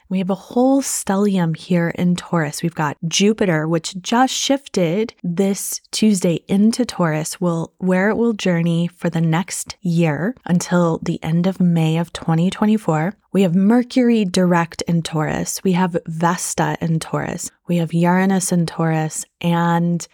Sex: female